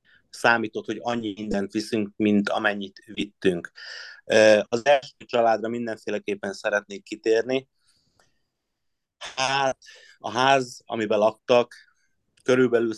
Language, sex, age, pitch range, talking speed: Hungarian, male, 30-49, 100-120 Hz, 90 wpm